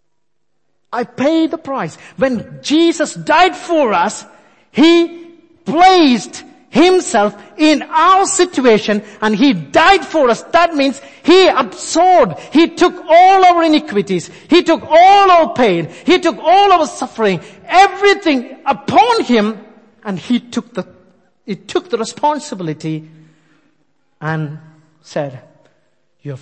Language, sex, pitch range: English, male, 180-290 Hz